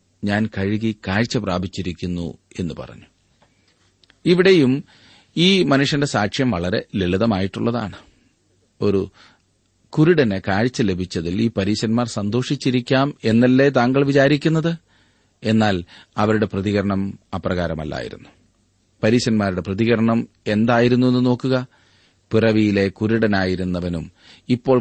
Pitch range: 95-125 Hz